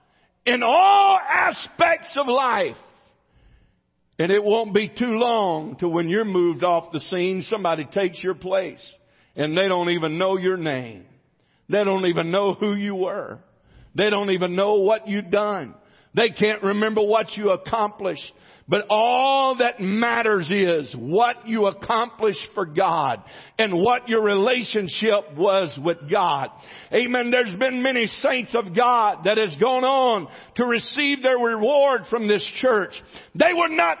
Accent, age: American, 50-69